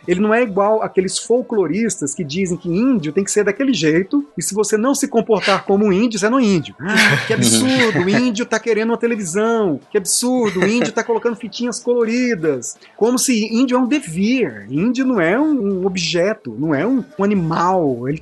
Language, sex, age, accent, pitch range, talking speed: Portuguese, male, 30-49, Brazilian, 165-235 Hz, 200 wpm